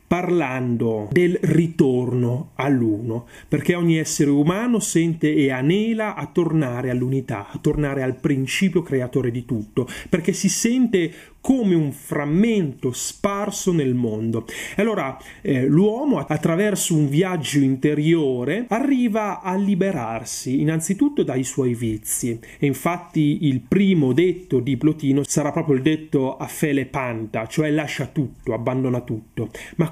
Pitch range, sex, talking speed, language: 130-180 Hz, male, 130 wpm, Italian